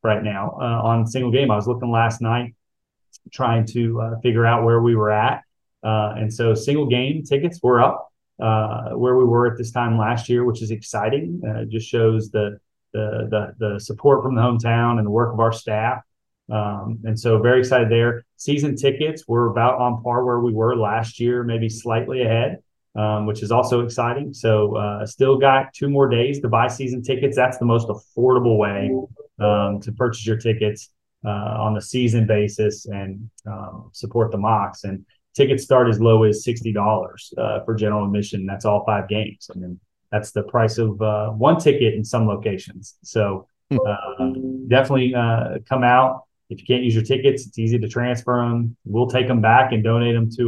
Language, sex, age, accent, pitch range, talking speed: English, male, 30-49, American, 110-125 Hz, 195 wpm